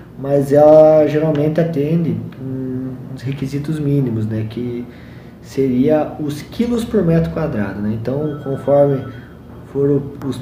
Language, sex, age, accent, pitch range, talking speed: Portuguese, male, 20-39, Brazilian, 125-145 Hz, 115 wpm